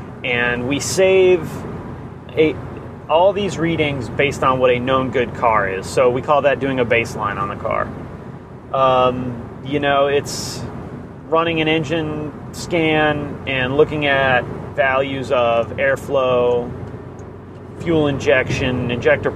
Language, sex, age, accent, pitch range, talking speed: English, male, 30-49, American, 125-155 Hz, 125 wpm